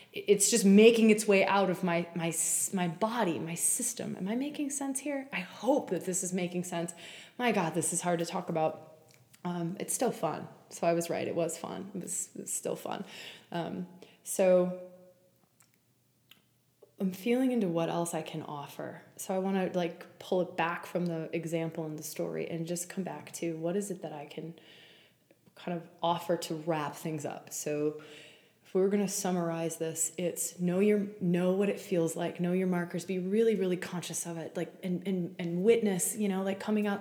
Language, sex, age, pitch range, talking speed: English, female, 20-39, 165-200 Hz, 205 wpm